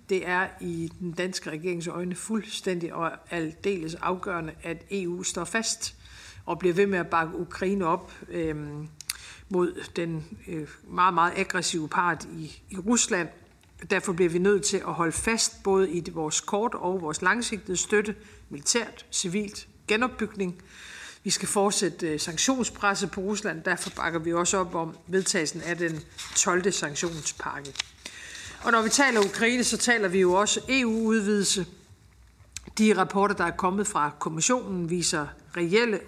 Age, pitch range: 50-69, 170-200 Hz